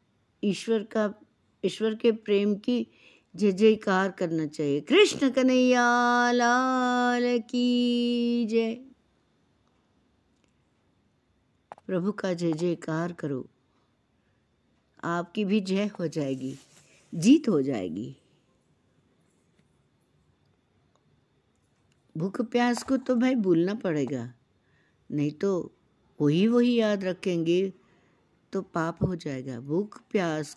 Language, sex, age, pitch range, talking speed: Hindi, female, 60-79, 160-230 Hz, 95 wpm